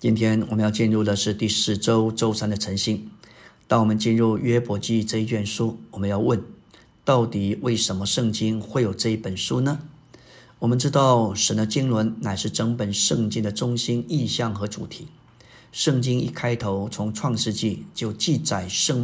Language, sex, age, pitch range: Chinese, male, 50-69, 110-130 Hz